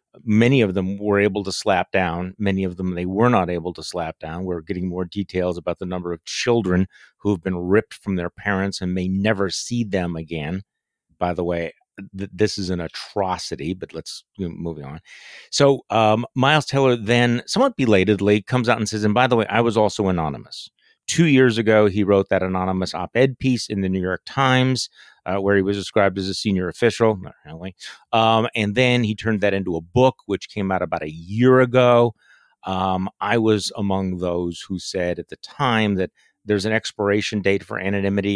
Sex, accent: male, American